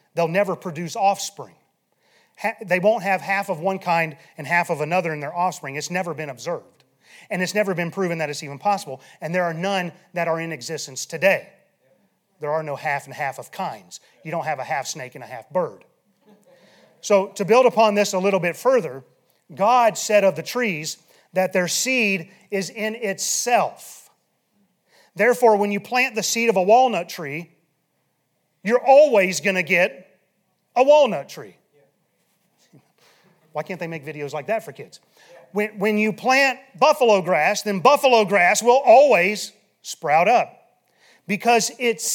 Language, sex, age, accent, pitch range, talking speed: English, male, 30-49, American, 170-215 Hz, 170 wpm